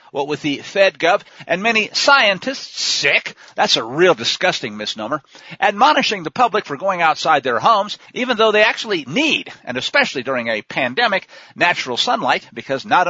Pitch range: 145-220 Hz